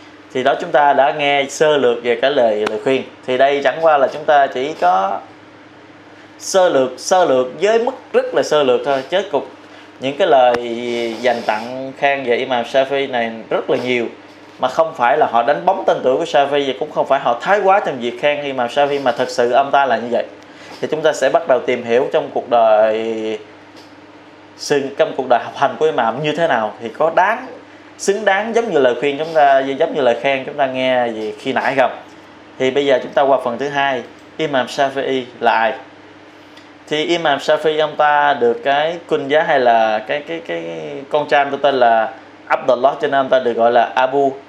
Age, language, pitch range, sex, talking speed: 20-39, Vietnamese, 120-155 Hz, male, 220 wpm